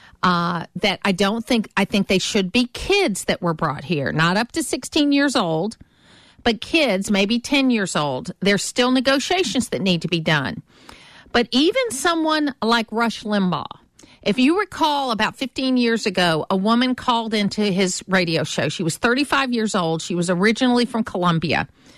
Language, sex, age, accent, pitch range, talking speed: English, female, 50-69, American, 190-260 Hz, 175 wpm